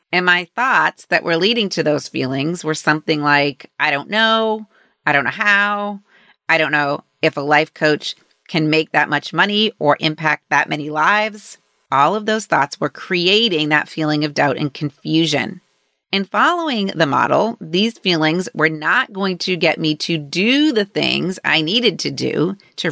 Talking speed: 180 wpm